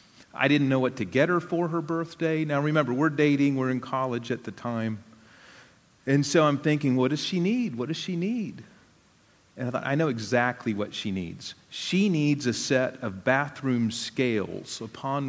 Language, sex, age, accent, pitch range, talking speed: English, male, 40-59, American, 120-180 Hz, 190 wpm